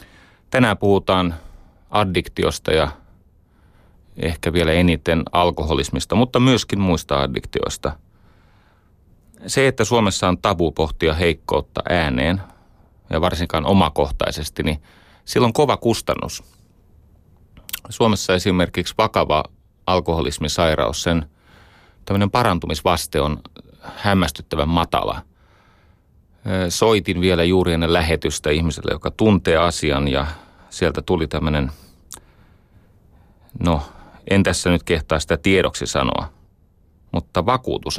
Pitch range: 80-95 Hz